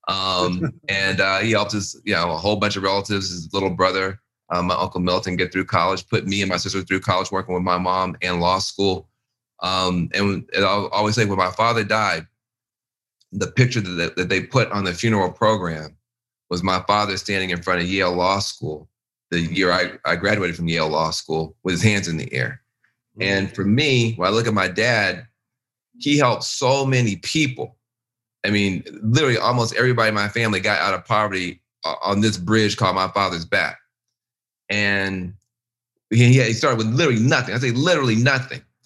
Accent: American